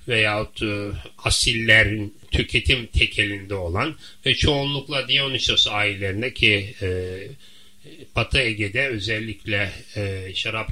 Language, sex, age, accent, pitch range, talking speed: Turkish, male, 30-49, native, 100-120 Hz, 85 wpm